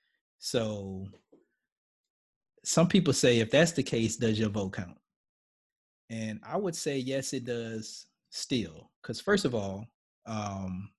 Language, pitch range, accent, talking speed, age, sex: English, 105-125 Hz, American, 135 wpm, 30-49, male